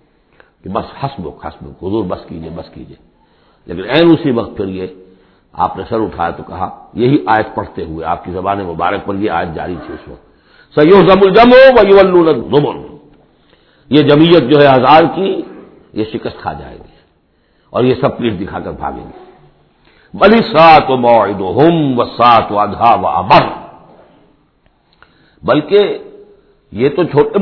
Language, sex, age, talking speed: English, male, 60-79, 135 wpm